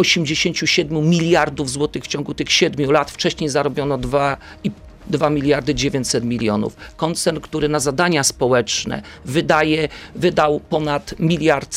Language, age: Polish, 50-69